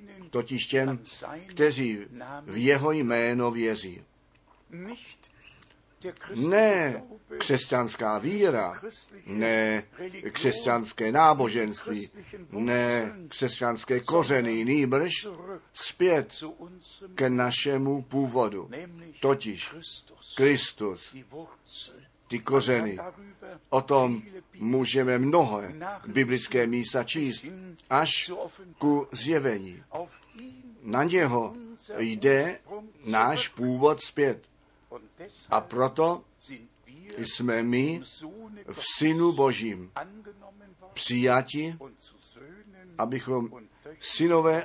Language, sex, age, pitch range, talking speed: Czech, male, 60-79, 120-170 Hz, 65 wpm